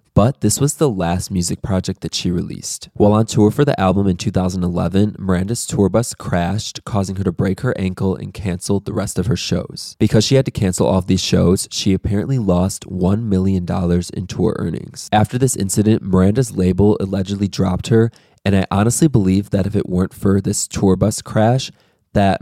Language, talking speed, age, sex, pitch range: English, 200 wpm, 20-39, male, 90-105 Hz